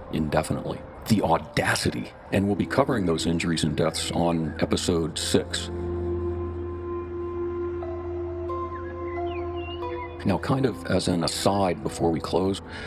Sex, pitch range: male, 85-105 Hz